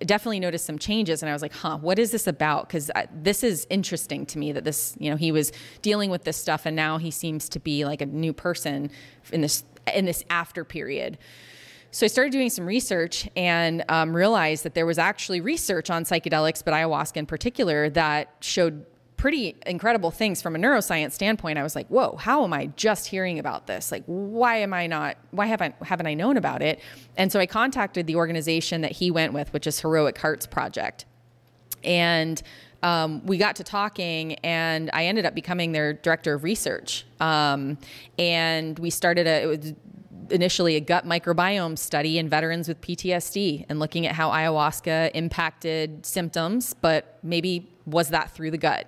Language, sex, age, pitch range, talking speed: English, female, 20-39, 155-185 Hz, 195 wpm